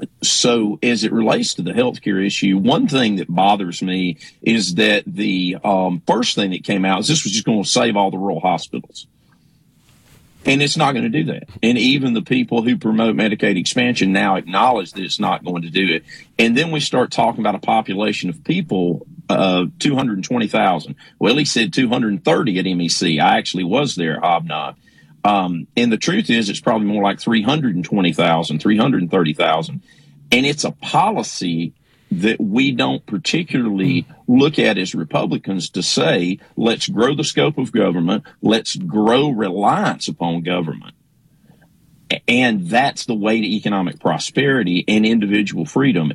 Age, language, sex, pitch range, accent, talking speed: 40-59, English, male, 90-120 Hz, American, 175 wpm